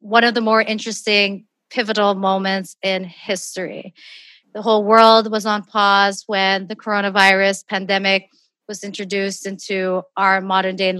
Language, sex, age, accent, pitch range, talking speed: English, female, 30-49, American, 195-235 Hz, 130 wpm